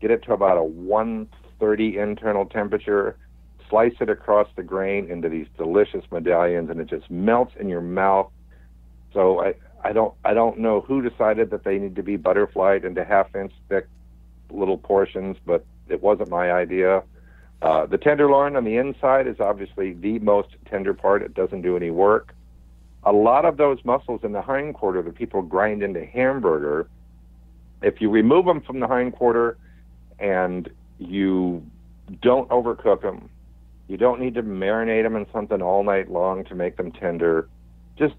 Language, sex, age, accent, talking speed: English, male, 60-79, American, 170 wpm